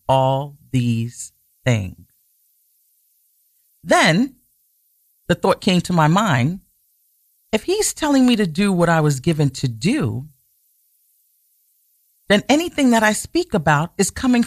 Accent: American